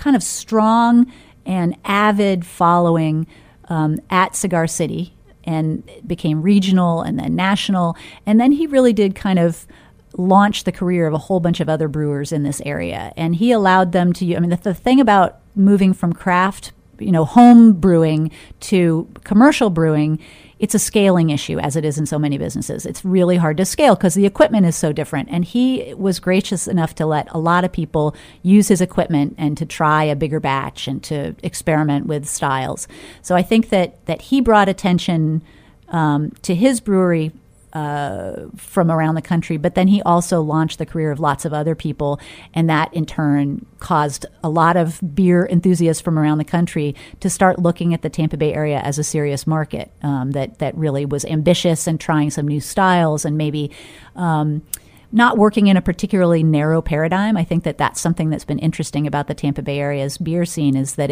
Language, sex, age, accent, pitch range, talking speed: English, female, 40-59, American, 155-185 Hz, 195 wpm